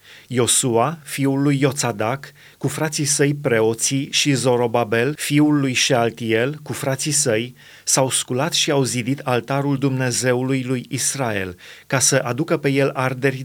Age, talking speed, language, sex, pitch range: 30-49, 140 wpm, Romanian, male, 125-145 Hz